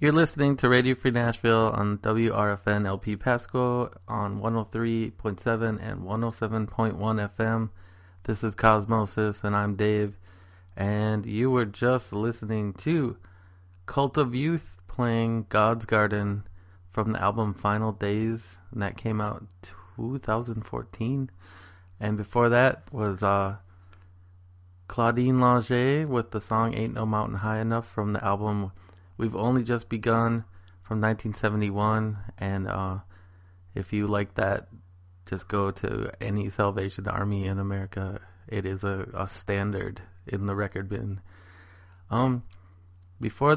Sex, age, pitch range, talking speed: male, 20-39, 95-115 Hz, 140 wpm